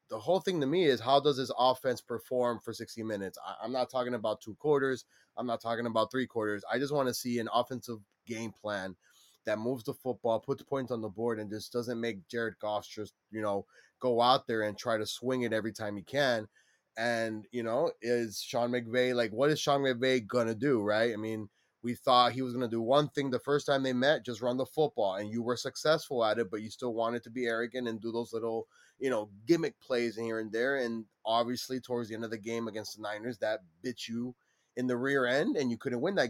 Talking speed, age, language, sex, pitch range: 245 wpm, 20-39, English, male, 115-145 Hz